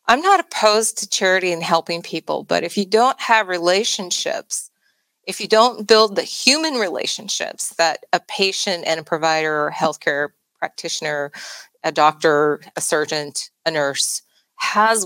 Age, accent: 30-49, American